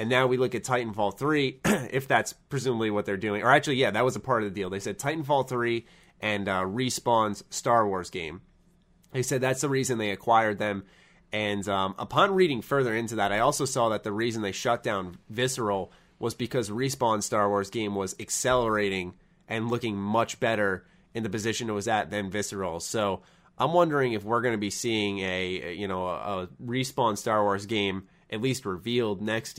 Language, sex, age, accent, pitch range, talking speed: English, male, 30-49, American, 100-125 Hz, 200 wpm